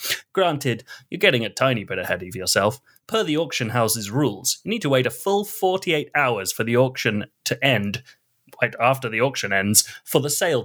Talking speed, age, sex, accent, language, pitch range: 205 wpm, 30-49, male, British, English, 115-165 Hz